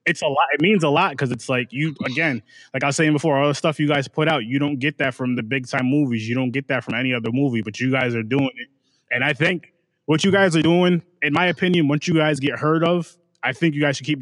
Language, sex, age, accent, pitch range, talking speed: English, male, 20-39, American, 125-150 Hz, 295 wpm